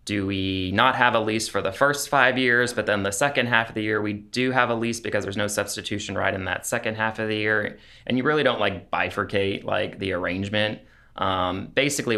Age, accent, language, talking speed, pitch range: 20-39, American, English, 230 wpm, 95-110 Hz